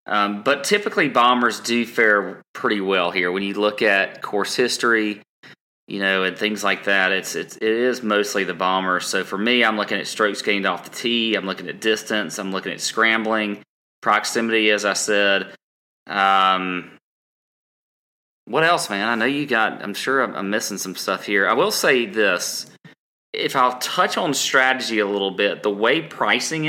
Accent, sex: American, male